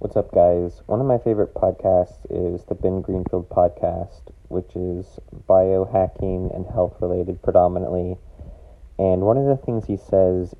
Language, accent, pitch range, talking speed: English, American, 90-100 Hz, 145 wpm